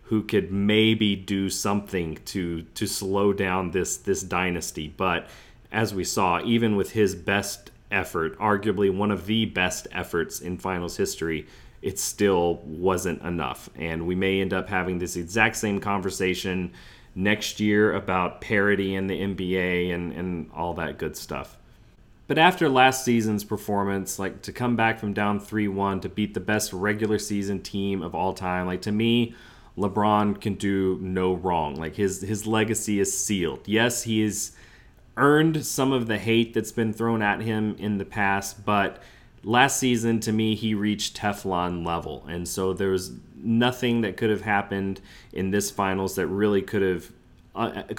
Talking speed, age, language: 170 wpm, 30-49, English